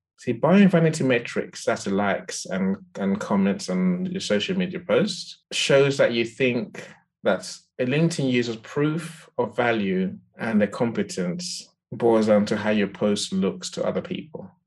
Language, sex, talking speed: English, male, 160 wpm